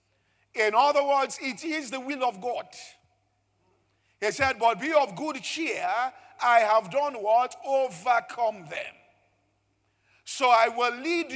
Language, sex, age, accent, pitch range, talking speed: English, male, 50-69, Nigerian, 230-285 Hz, 135 wpm